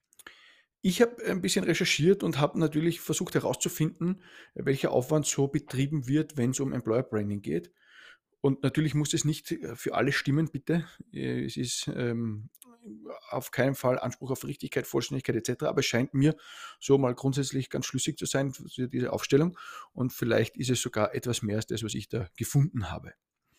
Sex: male